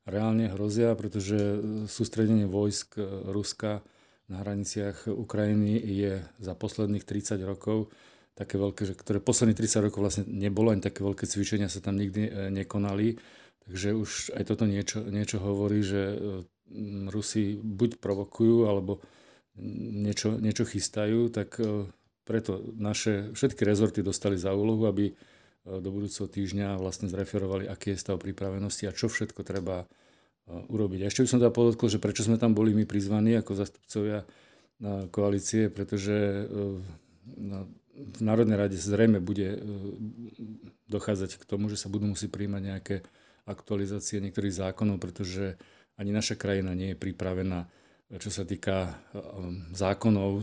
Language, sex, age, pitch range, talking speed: Slovak, male, 40-59, 100-110 Hz, 135 wpm